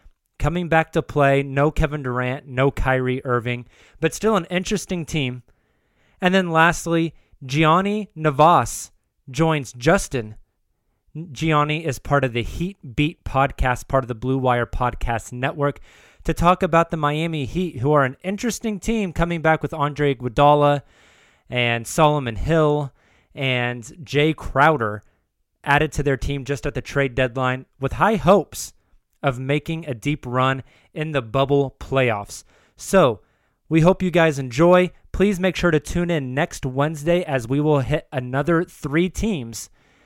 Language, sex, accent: English, male, American